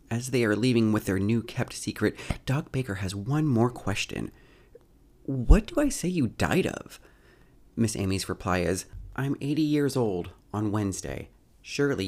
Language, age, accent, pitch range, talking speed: English, 30-49, American, 95-140 Hz, 165 wpm